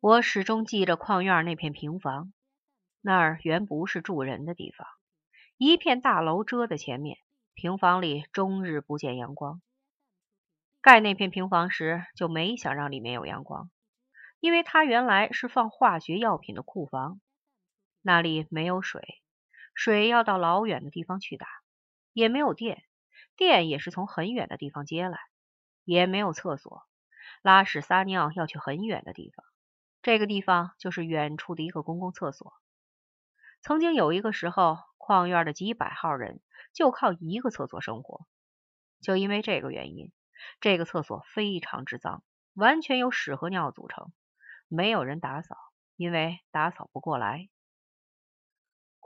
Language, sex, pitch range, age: Chinese, female, 160-220 Hz, 30-49